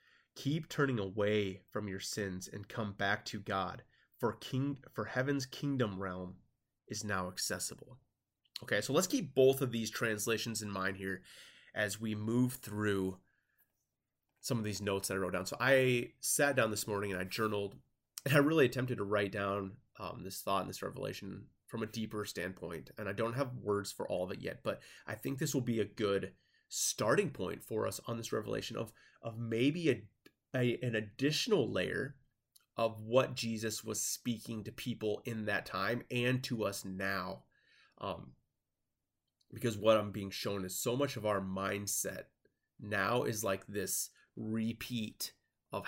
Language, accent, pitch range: English, American, 100-125 Hz